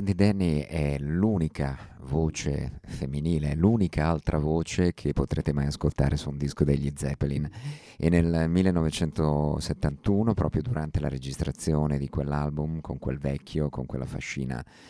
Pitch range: 70-85 Hz